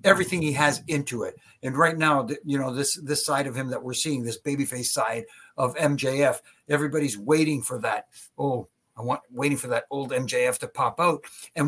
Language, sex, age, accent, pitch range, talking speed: English, male, 60-79, American, 140-165 Hz, 205 wpm